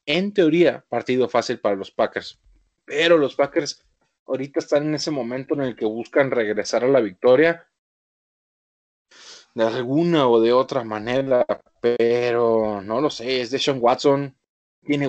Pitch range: 115-150 Hz